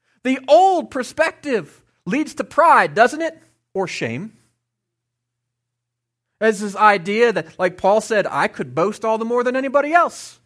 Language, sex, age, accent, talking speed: English, male, 30-49, American, 150 wpm